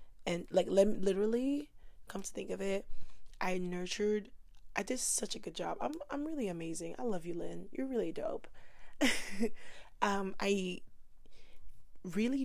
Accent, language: American, English